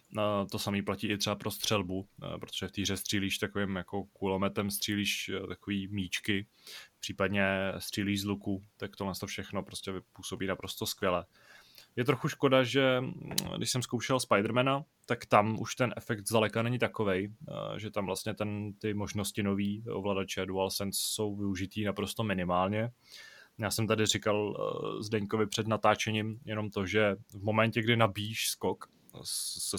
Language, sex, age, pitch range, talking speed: Czech, male, 20-39, 95-110 Hz, 150 wpm